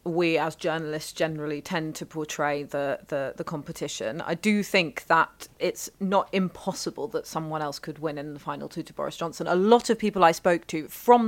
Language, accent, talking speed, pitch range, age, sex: English, British, 200 wpm, 155-185 Hz, 30-49, female